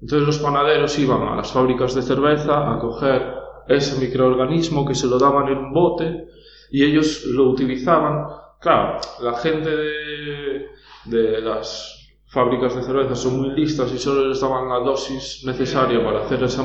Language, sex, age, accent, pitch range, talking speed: Spanish, male, 20-39, Spanish, 120-140 Hz, 165 wpm